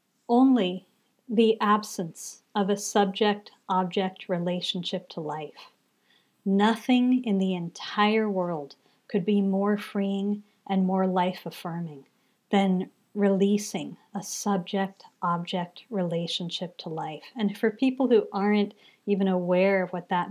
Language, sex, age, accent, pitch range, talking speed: English, female, 40-59, American, 185-225 Hz, 110 wpm